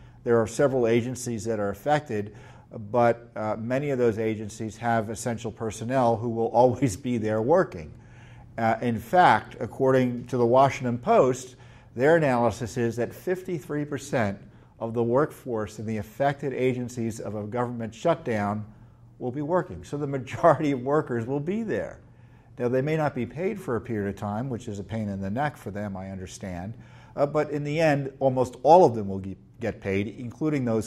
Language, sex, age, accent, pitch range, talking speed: English, male, 50-69, American, 110-130 Hz, 185 wpm